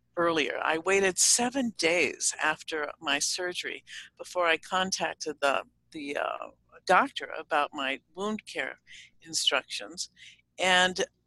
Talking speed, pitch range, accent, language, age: 110 wpm, 165-210 Hz, American, English, 60-79